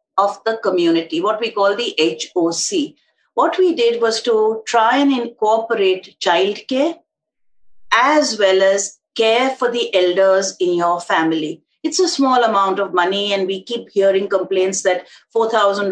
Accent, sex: Indian, female